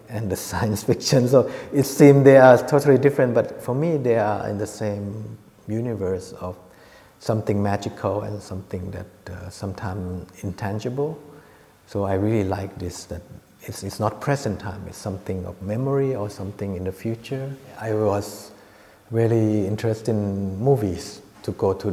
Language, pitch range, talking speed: English, 100-120 Hz, 160 wpm